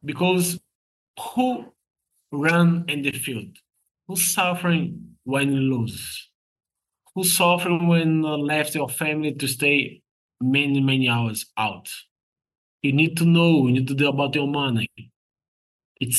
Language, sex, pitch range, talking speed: English, male, 120-150 Hz, 135 wpm